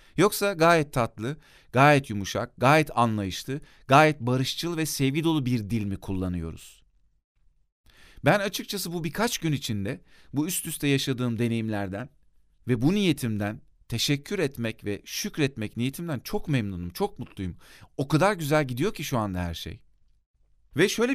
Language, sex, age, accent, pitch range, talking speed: Turkish, male, 40-59, native, 100-155 Hz, 140 wpm